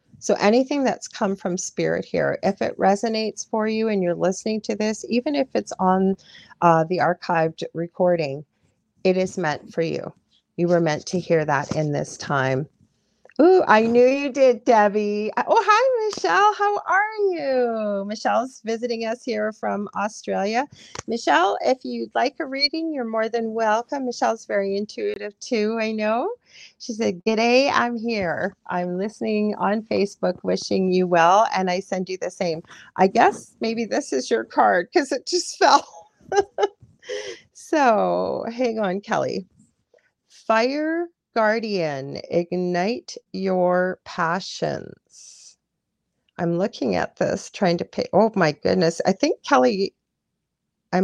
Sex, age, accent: female, 40-59, American